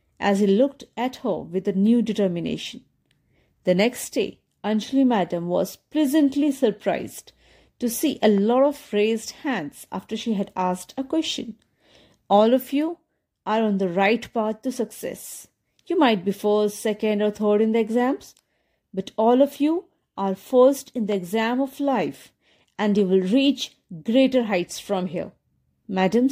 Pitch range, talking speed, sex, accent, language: 195-265 Hz, 160 wpm, female, Indian, English